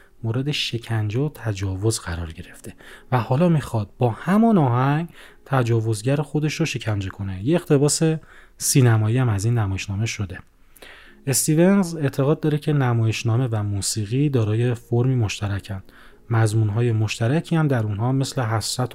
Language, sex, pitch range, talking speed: Persian, male, 105-140 Hz, 135 wpm